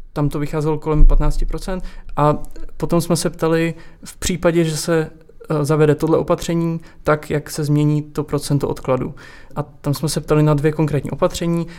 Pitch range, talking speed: 145-160 Hz, 170 wpm